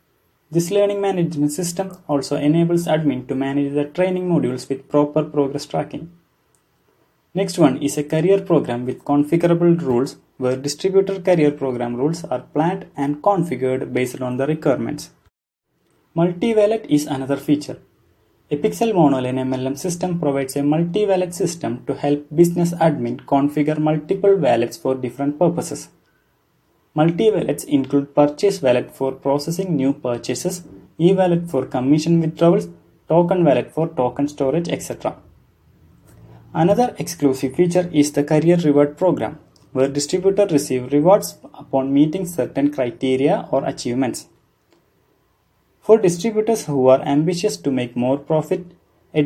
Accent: Indian